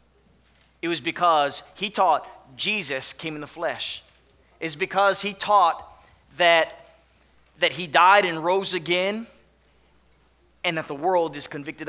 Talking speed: 135 wpm